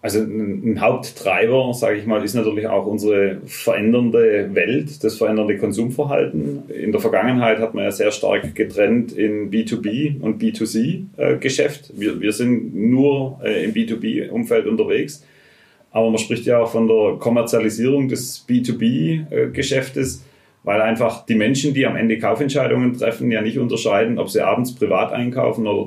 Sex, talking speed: male, 145 wpm